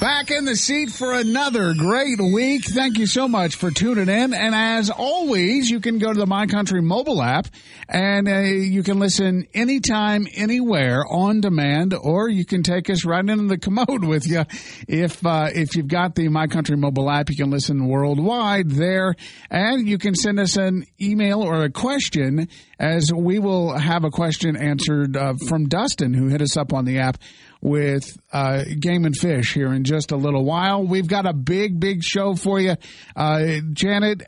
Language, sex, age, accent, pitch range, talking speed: English, male, 50-69, American, 155-200 Hz, 190 wpm